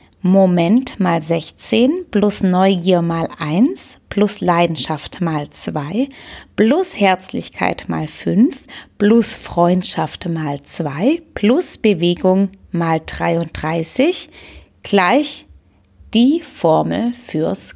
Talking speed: 90 wpm